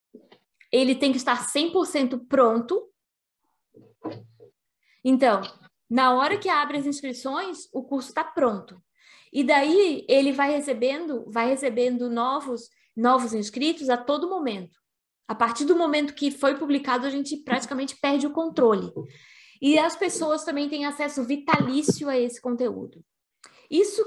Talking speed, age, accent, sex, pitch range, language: 135 wpm, 20-39, Brazilian, female, 230-285 Hz, Portuguese